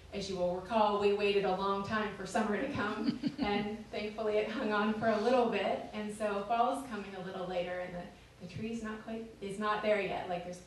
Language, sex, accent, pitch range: English, female, American, 185-215 Hz